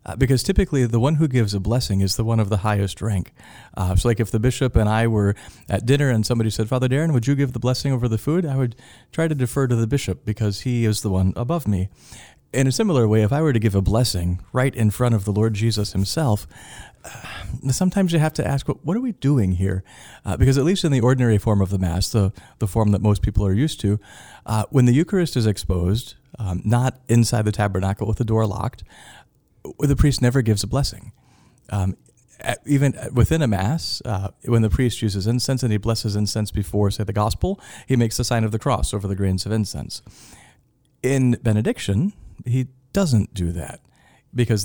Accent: American